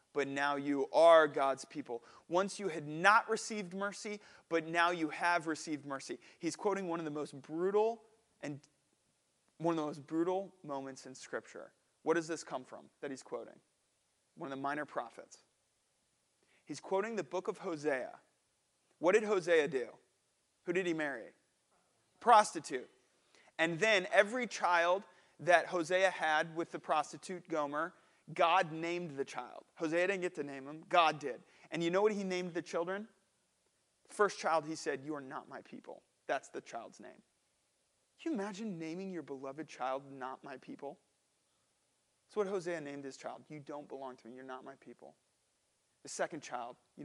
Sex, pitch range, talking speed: male, 140-185 Hz, 170 wpm